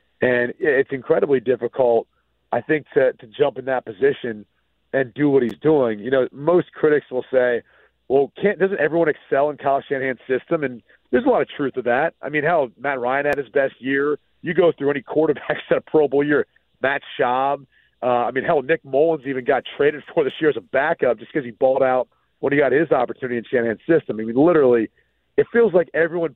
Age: 40-59